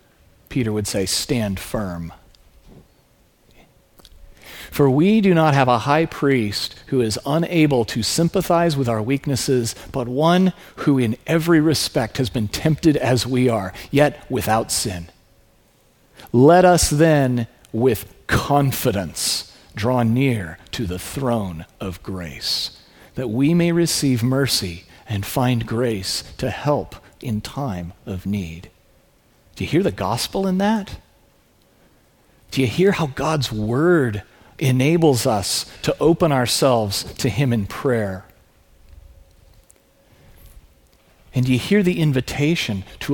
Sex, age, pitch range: male, 40-59, 100-140 Hz